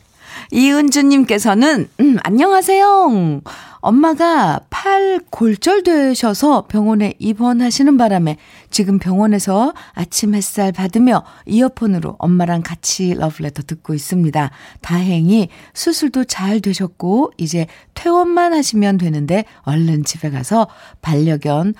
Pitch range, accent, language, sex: 160-235 Hz, native, Korean, female